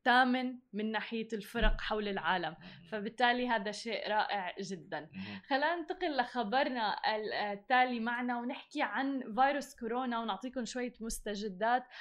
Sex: female